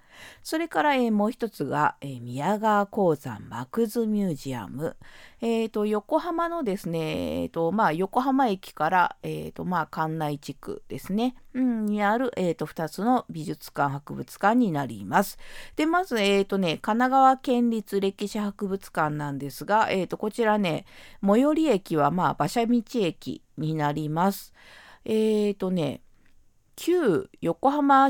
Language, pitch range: Japanese, 165-245 Hz